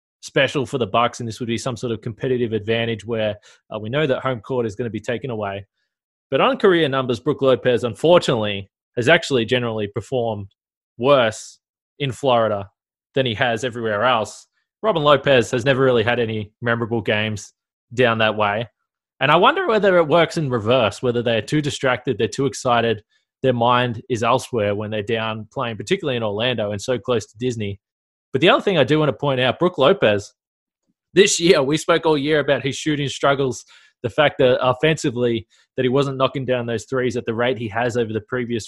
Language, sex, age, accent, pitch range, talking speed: English, male, 20-39, Australian, 115-140 Hz, 200 wpm